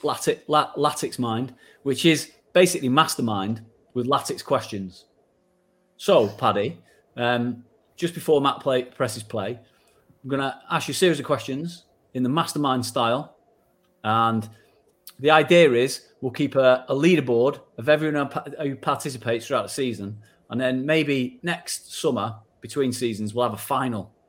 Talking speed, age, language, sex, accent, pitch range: 145 wpm, 30-49, English, male, British, 120-140 Hz